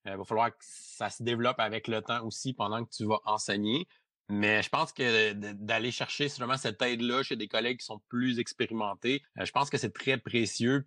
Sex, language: male, French